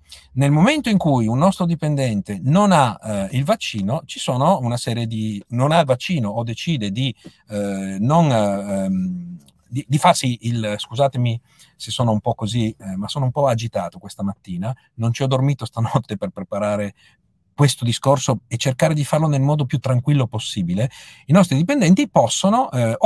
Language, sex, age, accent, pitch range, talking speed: Italian, male, 50-69, native, 110-165 Hz, 175 wpm